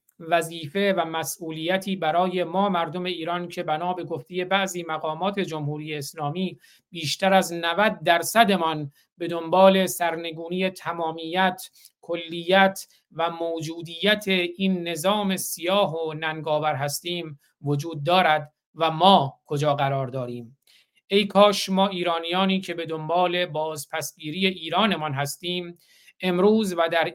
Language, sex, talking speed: Persian, male, 115 wpm